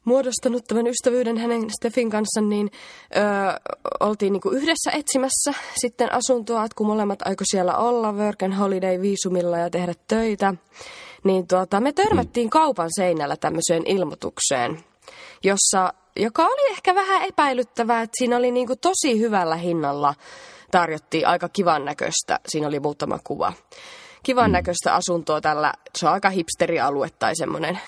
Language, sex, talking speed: Finnish, female, 135 wpm